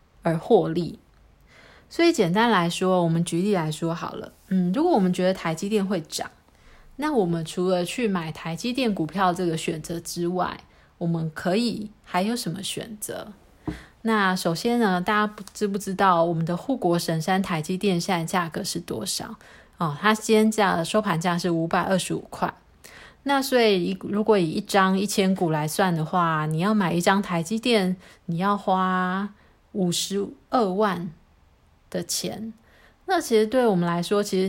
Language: Chinese